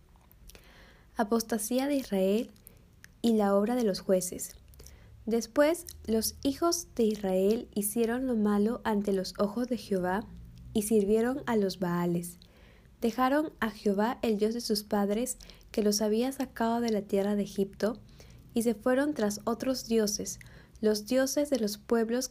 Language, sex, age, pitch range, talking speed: Spanish, female, 10-29, 200-235 Hz, 150 wpm